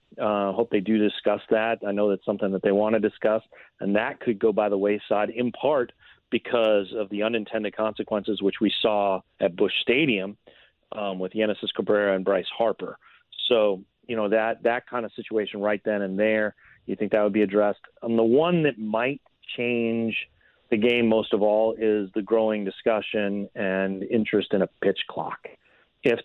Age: 30-49